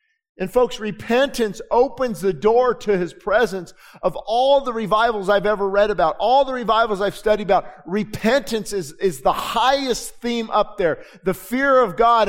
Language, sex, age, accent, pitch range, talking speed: English, male, 50-69, American, 190-245 Hz, 170 wpm